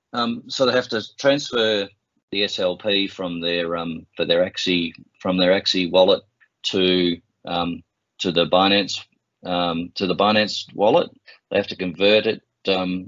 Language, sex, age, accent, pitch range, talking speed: English, male, 30-49, Australian, 90-100 Hz, 155 wpm